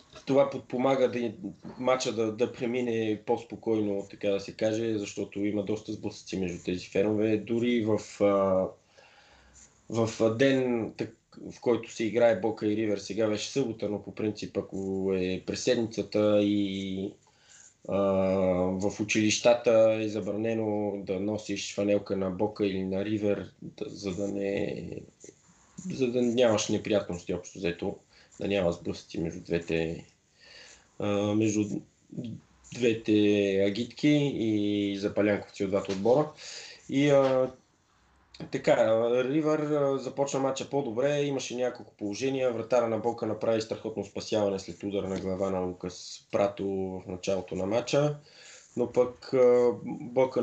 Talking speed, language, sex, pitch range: 130 wpm, Bulgarian, male, 100-120 Hz